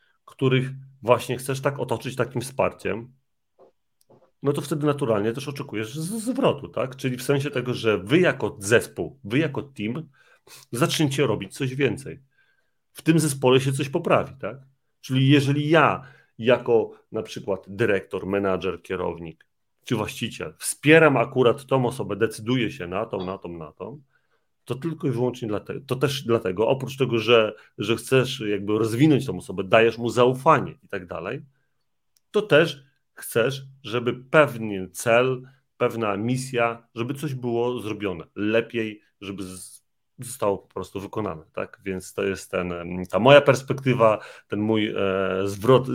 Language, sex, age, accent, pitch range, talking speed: Polish, male, 40-59, native, 110-140 Hz, 145 wpm